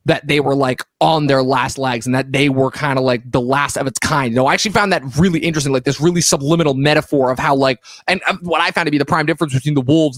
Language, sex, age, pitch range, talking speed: English, male, 20-39, 135-165 Hz, 290 wpm